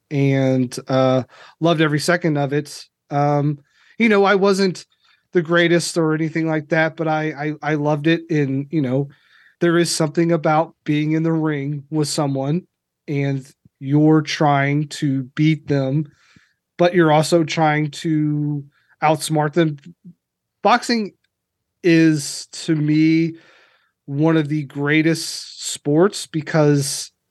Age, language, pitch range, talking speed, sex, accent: 30-49, English, 145-170 Hz, 130 wpm, male, American